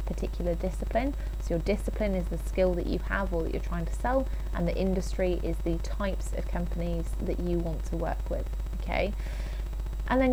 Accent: British